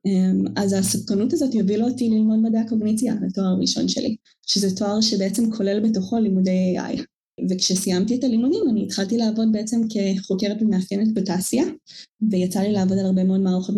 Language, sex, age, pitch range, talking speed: Hebrew, female, 10-29, 195-225 Hz, 150 wpm